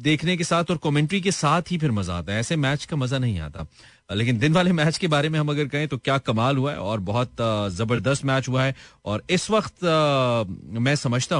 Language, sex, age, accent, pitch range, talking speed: Hindi, male, 30-49, native, 115-155 Hz, 230 wpm